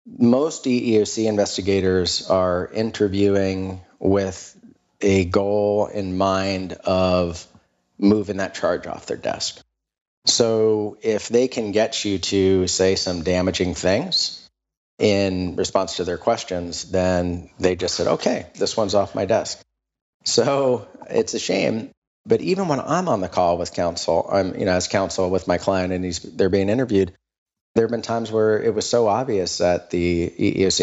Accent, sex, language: American, male, English